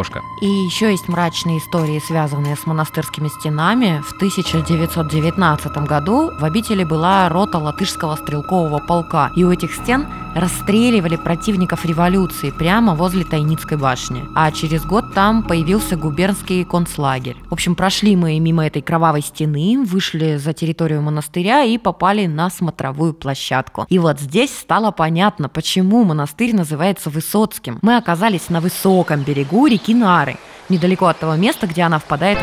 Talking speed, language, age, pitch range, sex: 140 wpm, Russian, 20-39, 155-200 Hz, female